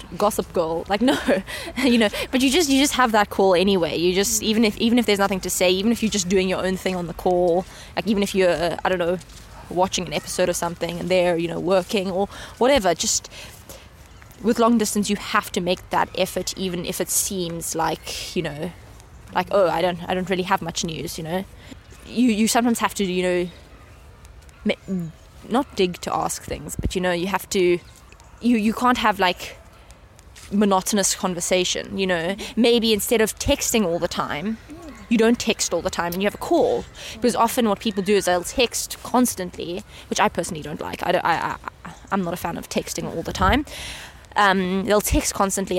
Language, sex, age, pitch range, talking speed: English, female, 20-39, 180-220 Hz, 205 wpm